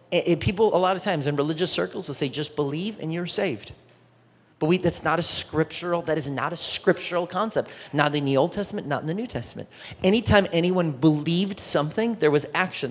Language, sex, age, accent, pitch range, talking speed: English, male, 30-49, American, 145-190 Hz, 200 wpm